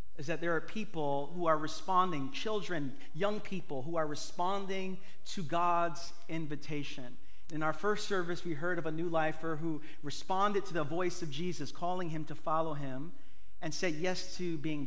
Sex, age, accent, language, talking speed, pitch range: male, 40-59, American, English, 180 wpm, 140-175 Hz